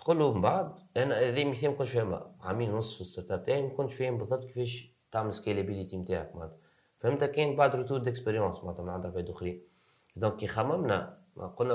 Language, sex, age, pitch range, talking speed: Arabic, male, 30-49, 95-125 Hz, 160 wpm